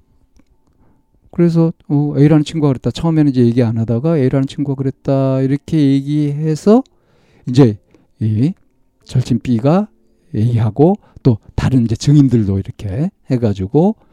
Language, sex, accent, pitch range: Korean, male, native, 110-145 Hz